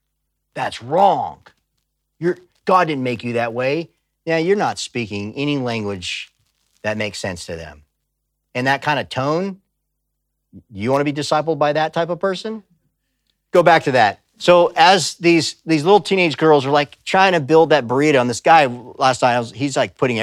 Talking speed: 180 wpm